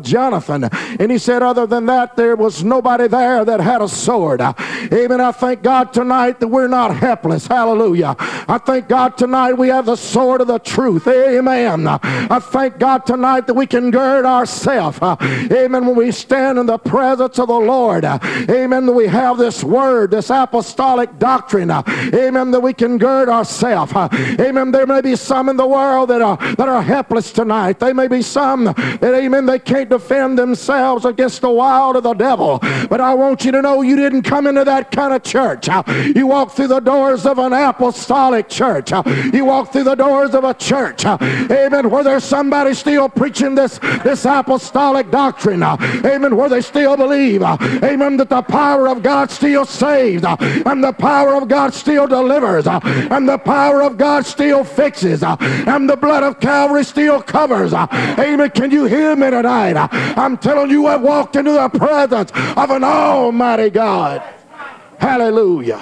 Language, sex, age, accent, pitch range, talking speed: English, male, 50-69, American, 245-275 Hz, 175 wpm